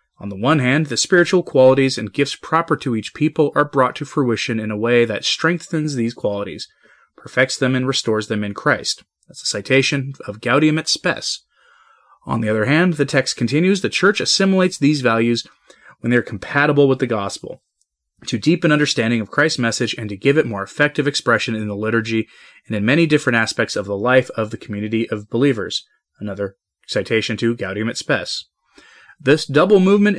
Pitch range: 110-145 Hz